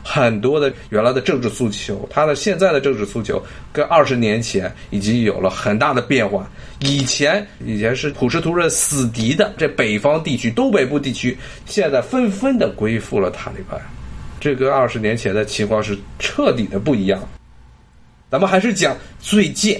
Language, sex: Chinese, male